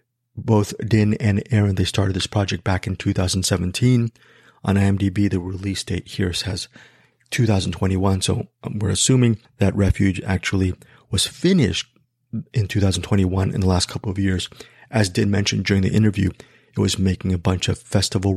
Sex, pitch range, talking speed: male, 95-115 Hz, 155 wpm